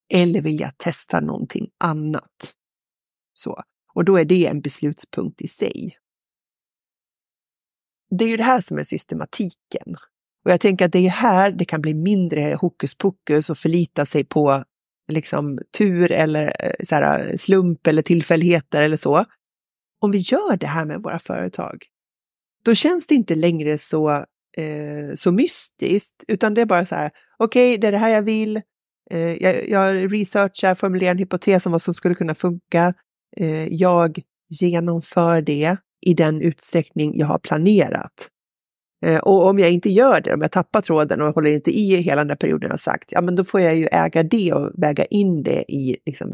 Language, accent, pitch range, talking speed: Swedish, native, 155-195 Hz, 175 wpm